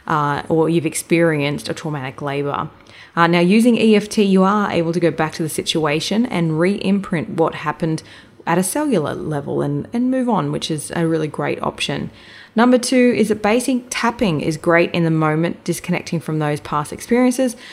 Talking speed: 185 wpm